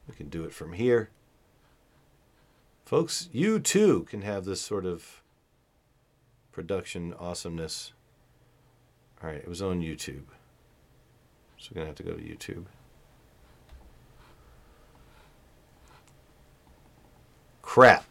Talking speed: 105 wpm